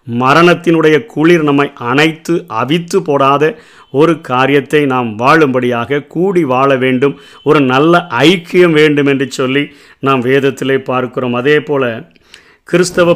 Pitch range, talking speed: 135-165 Hz, 115 wpm